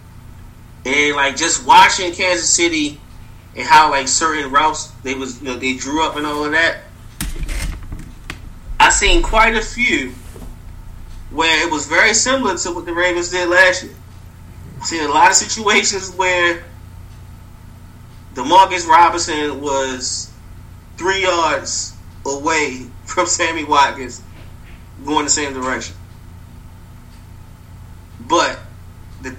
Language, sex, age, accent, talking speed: English, male, 30-49, American, 120 wpm